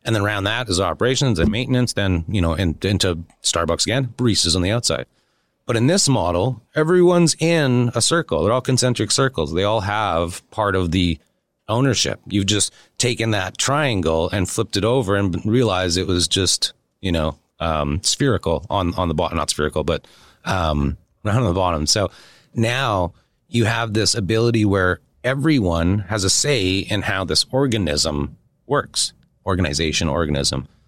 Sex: male